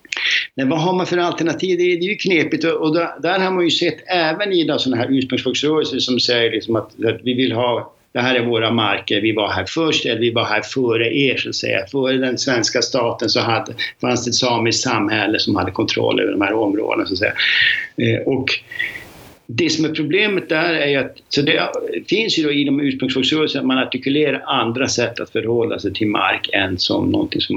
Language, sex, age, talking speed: Swedish, male, 60-79, 210 wpm